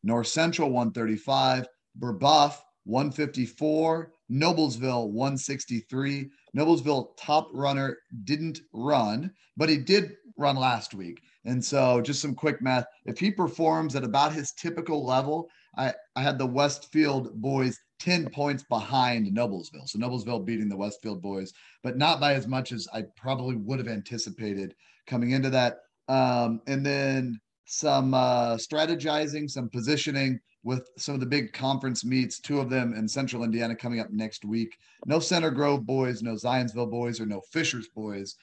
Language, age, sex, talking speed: English, 30-49, male, 155 wpm